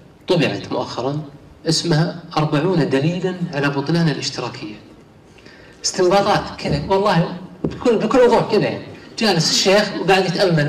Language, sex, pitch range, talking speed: Arabic, male, 150-195 Hz, 110 wpm